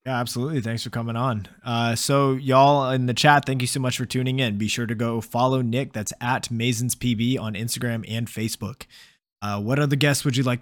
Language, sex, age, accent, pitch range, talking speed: English, male, 20-39, American, 120-140 Hz, 225 wpm